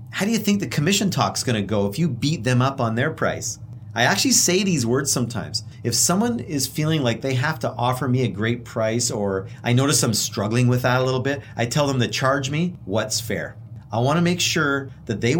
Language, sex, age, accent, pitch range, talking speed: English, male, 40-59, American, 115-145 Hz, 235 wpm